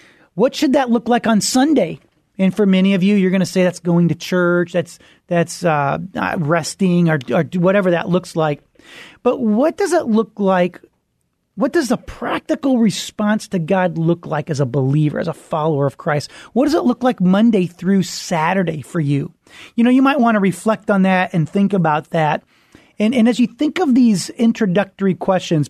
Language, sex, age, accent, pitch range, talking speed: English, male, 30-49, American, 175-225 Hz, 200 wpm